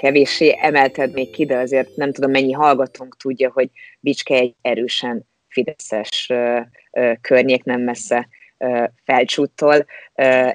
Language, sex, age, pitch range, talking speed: Hungarian, female, 30-49, 125-135 Hz, 135 wpm